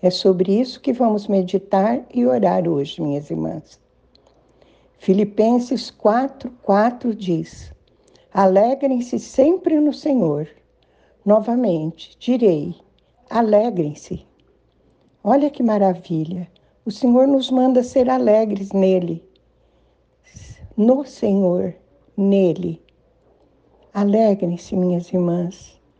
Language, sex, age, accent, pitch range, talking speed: Portuguese, female, 60-79, Brazilian, 185-240 Hz, 90 wpm